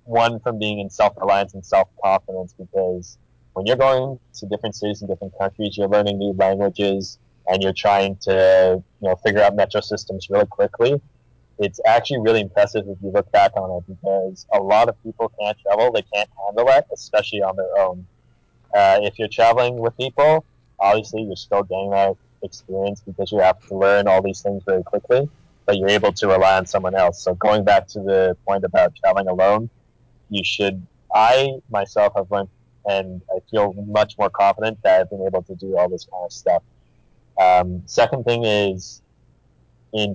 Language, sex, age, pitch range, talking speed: English, male, 20-39, 95-110 Hz, 185 wpm